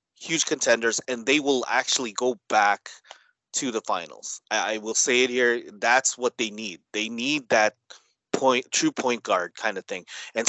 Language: English